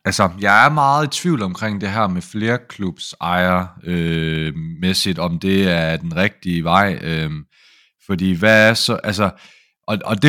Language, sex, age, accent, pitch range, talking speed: Danish, male, 30-49, native, 90-115 Hz, 165 wpm